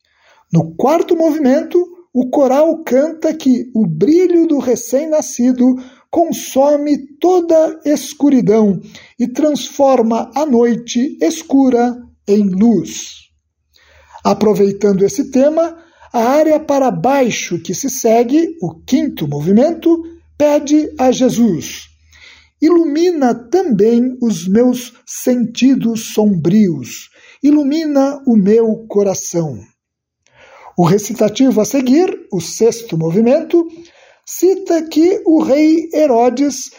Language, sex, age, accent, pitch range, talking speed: Portuguese, male, 50-69, Brazilian, 210-305 Hz, 95 wpm